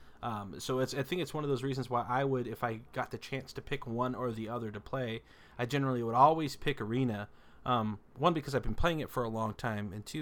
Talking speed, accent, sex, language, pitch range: 265 wpm, American, male, English, 110-140 Hz